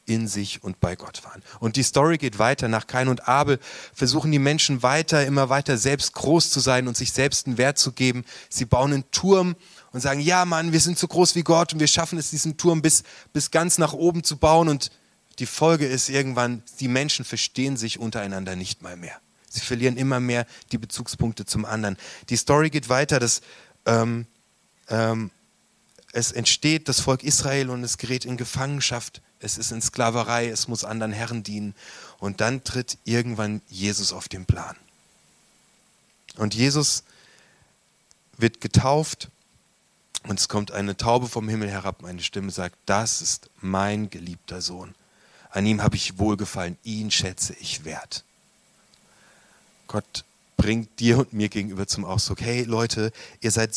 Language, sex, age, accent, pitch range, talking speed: German, male, 30-49, German, 105-135 Hz, 175 wpm